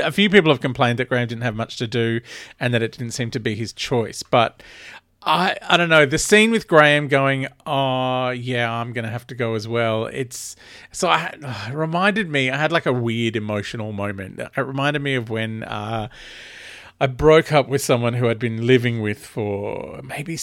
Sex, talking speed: male, 205 wpm